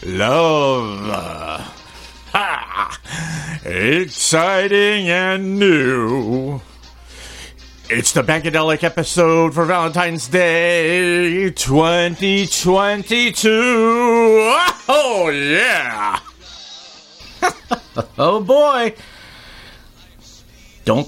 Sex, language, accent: male, English, American